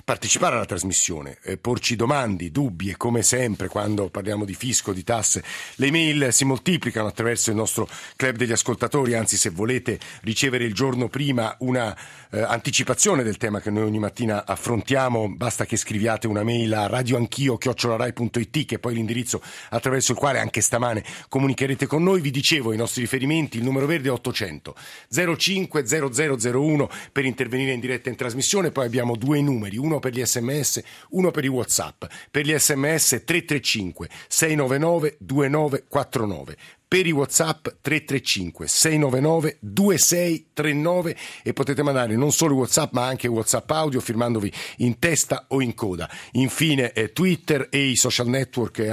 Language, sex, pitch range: Italian, male, 115-145 Hz